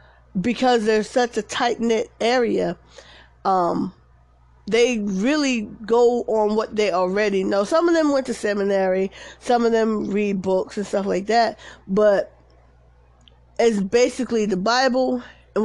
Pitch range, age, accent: 195-245 Hz, 20-39, American